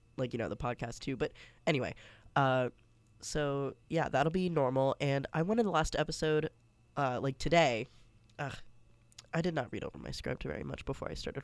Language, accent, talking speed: English, American, 190 wpm